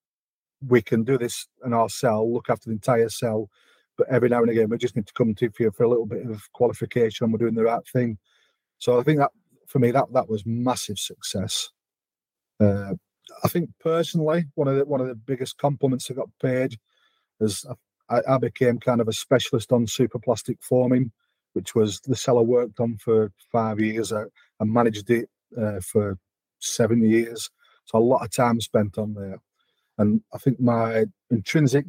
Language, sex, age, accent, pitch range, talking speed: English, male, 30-49, British, 110-125 Hz, 195 wpm